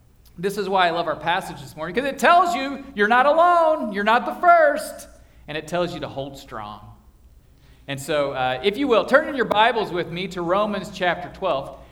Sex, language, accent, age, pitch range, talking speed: male, English, American, 40-59, 185-265 Hz, 215 wpm